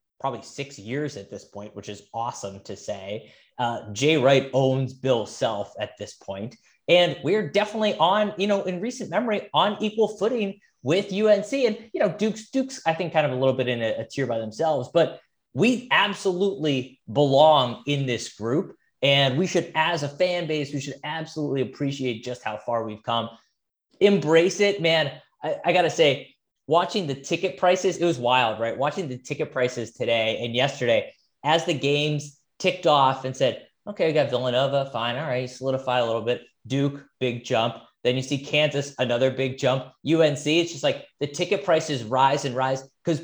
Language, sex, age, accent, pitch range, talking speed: English, male, 20-39, American, 130-180 Hz, 190 wpm